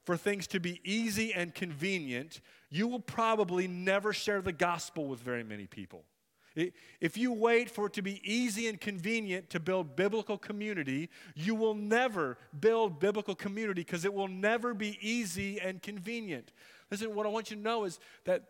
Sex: male